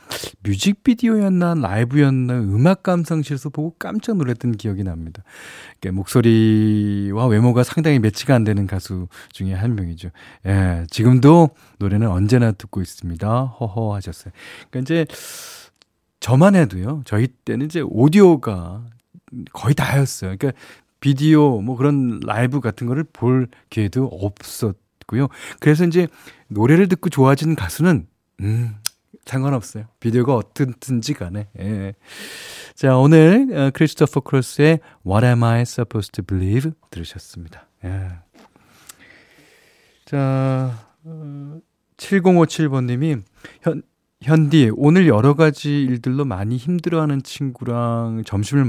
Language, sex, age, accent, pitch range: Korean, male, 40-59, native, 105-145 Hz